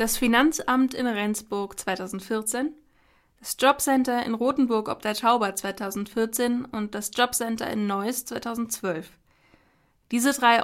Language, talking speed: German, 120 wpm